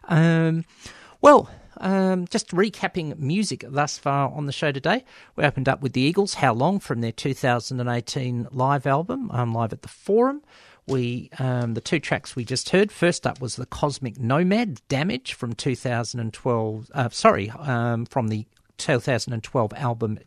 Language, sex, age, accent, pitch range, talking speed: English, male, 50-69, Australian, 120-175 Hz, 155 wpm